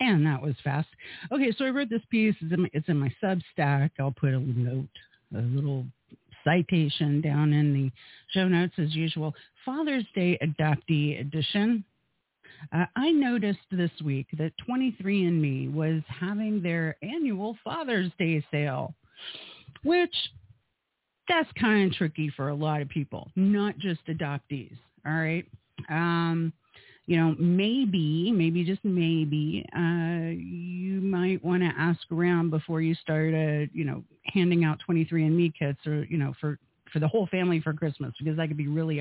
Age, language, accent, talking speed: 50-69, English, American, 160 wpm